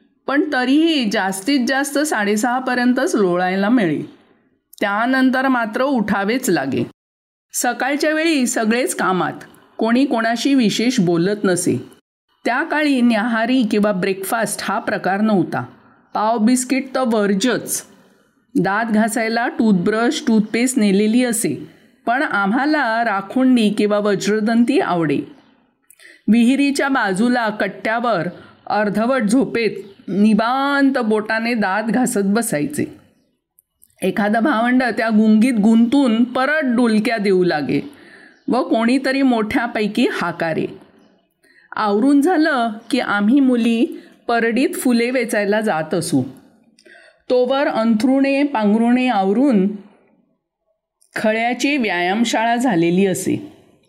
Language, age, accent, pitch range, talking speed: Marathi, 50-69, native, 210-265 Hz, 90 wpm